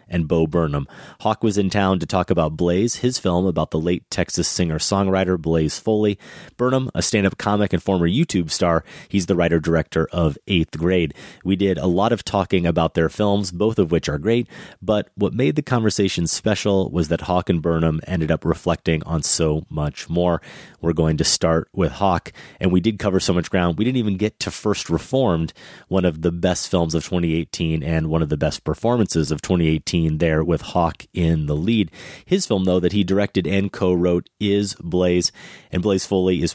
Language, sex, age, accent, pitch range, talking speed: English, male, 30-49, American, 80-100 Hz, 200 wpm